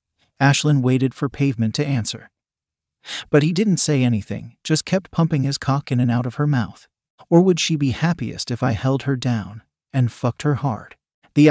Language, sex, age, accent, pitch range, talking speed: English, male, 40-59, American, 125-150 Hz, 195 wpm